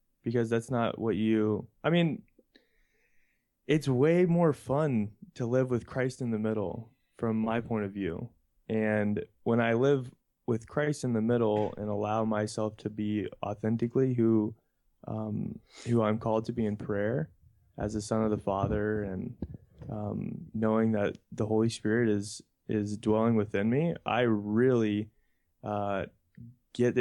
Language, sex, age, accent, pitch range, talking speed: English, male, 20-39, American, 105-120 Hz, 155 wpm